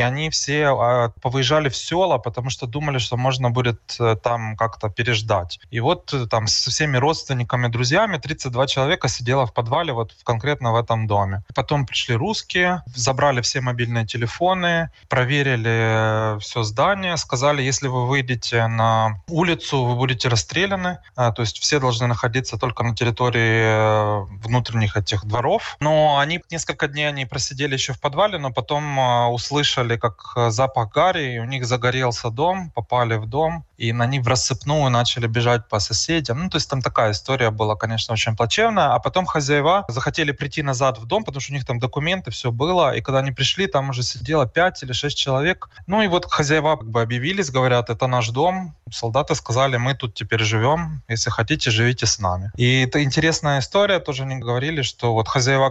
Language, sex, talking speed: Russian, male, 170 wpm